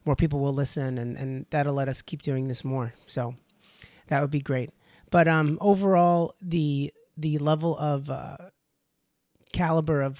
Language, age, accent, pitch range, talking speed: English, 30-49, American, 140-165 Hz, 165 wpm